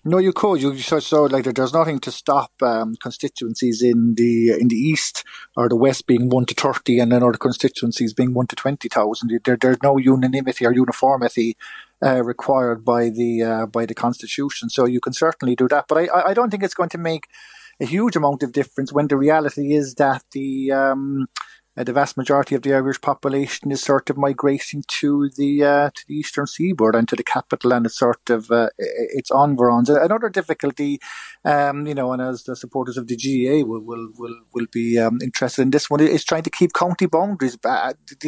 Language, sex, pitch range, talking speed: English, male, 120-145 Hz, 215 wpm